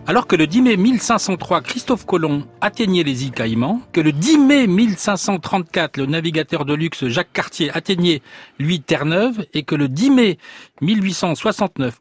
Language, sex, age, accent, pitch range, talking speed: French, male, 40-59, French, 135-195 Hz, 160 wpm